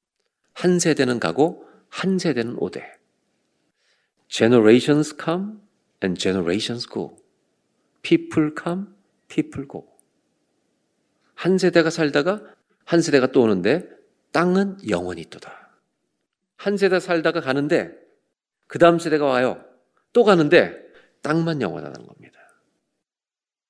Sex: male